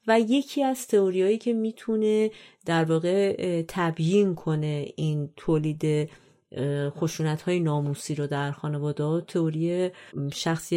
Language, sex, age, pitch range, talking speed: Persian, female, 30-49, 150-170 Hz, 110 wpm